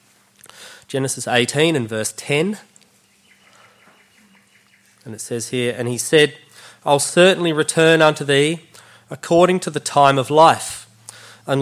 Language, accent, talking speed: English, Australian, 125 wpm